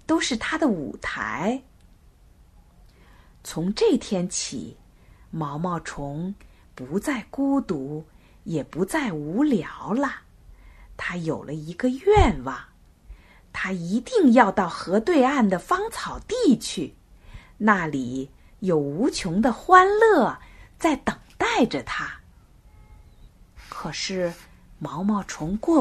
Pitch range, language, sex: 155-260 Hz, Chinese, female